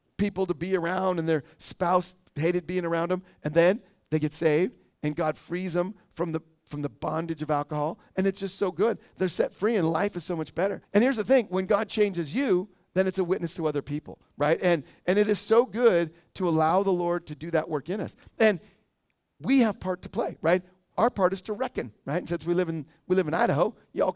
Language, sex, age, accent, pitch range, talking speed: English, male, 40-59, American, 165-200 Hz, 240 wpm